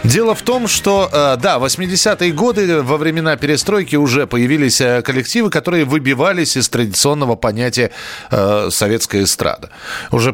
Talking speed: 135 wpm